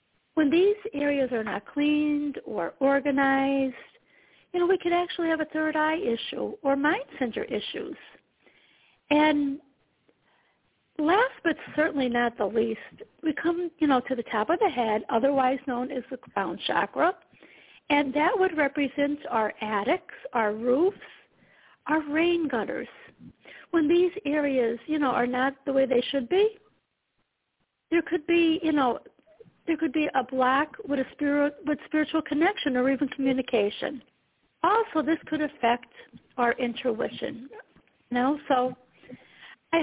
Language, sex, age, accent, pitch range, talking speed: English, female, 50-69, American, 255-330 Hz, 145 wpm